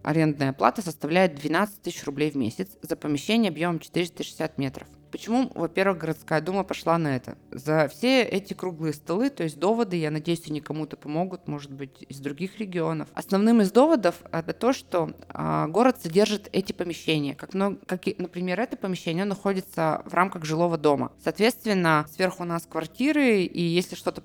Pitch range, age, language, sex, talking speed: 145-185 Hz, 20-39, Russian, female, 160 wpm